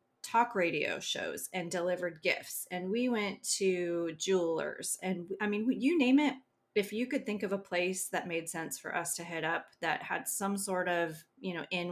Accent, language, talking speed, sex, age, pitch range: American, English, 200 wpm, female, 30-49, 170-215 Hz